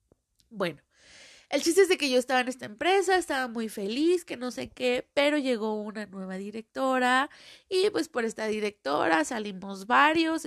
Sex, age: female, 30-49